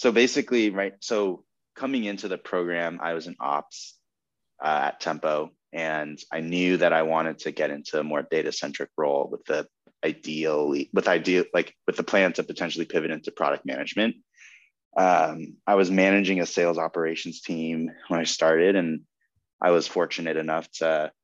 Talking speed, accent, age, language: 170 wpm, American, 20-39, English